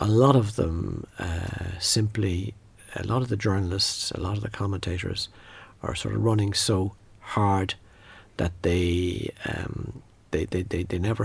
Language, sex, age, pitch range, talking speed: English, male, 60-79, 95-120 Hz, 160 wpm